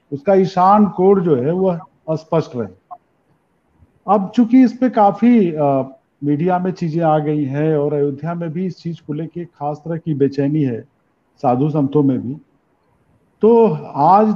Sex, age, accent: male, 50-69, native